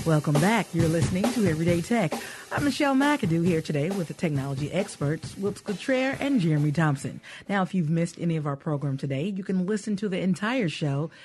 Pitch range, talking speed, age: 150-220 Hz, 195 wpm, 40-59